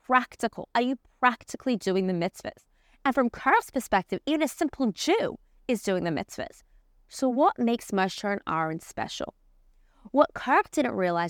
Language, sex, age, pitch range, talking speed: English, female, 20-39, 185-275 Hz, 160 wpm